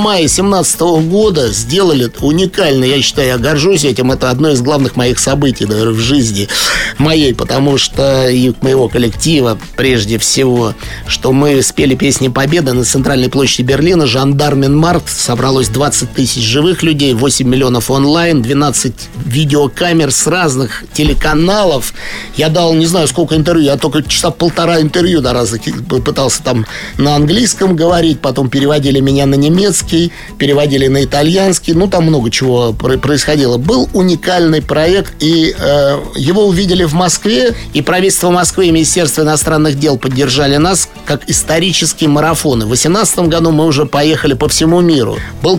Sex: male